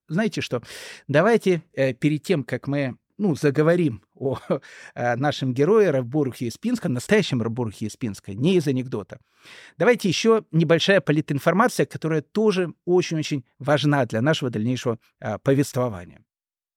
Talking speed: 120 wpm